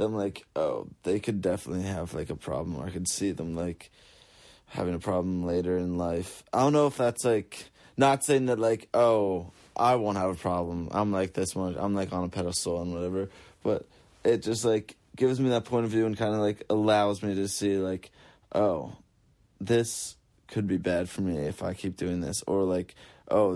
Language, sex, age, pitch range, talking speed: English, male, 20-39, 90-105 Hz, 210 wpm